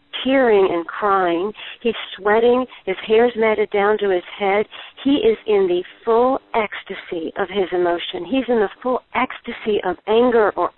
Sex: female